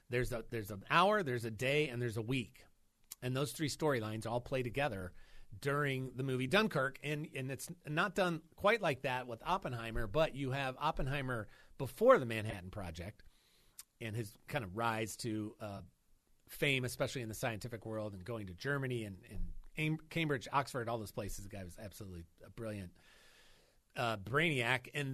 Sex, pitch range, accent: male, 110-145 Hz, American